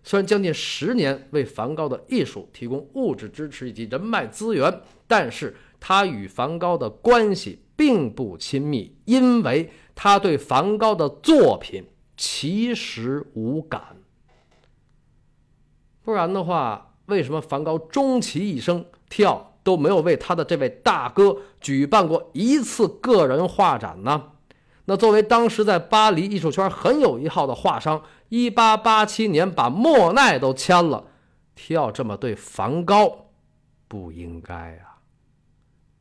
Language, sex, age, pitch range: Chinese, male, 50-69, 130-215 Hz